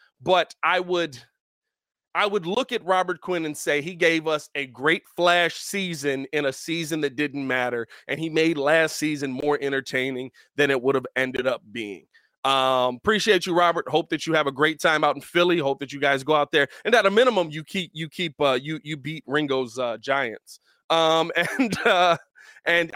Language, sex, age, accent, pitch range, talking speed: English, male, 20-39, American, 140-180 Hz, 205 wpm